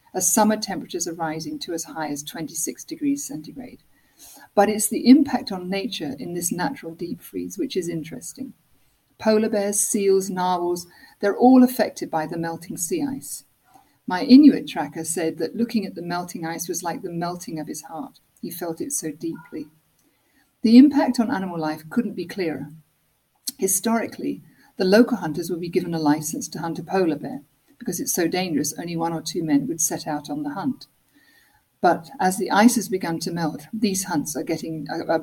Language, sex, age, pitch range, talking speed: English, female, 50-69, 165-245 Hz, 185 wpm